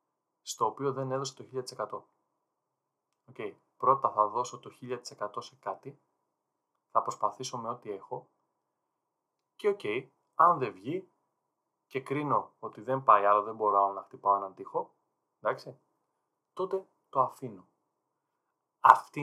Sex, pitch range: male, 110-145 Hz